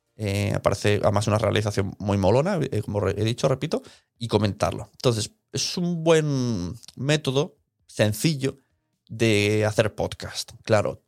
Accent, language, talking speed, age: Spanish, Spanish, 130 wpm, 30-49